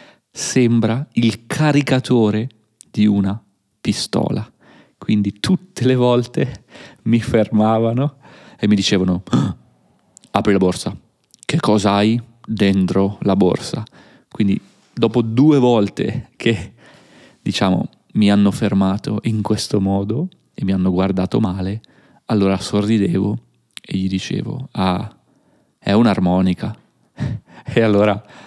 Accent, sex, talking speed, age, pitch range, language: native, male, 105 wpm, 30-49, 95-110 Hz, Italian